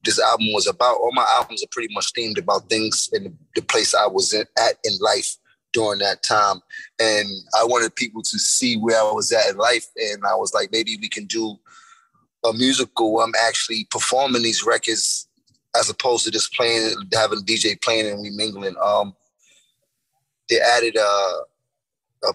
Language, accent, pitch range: English, American, 110-140 Hz